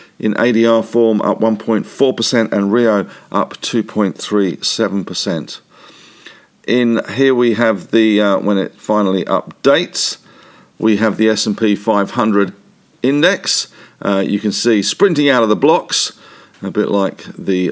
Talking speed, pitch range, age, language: 130 wpm, 95-110 Hz, 50-69, English